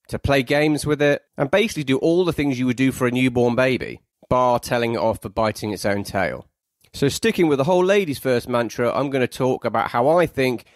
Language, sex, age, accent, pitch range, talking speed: English, male, 30-49, British, 115-145 Hz, 240 wpm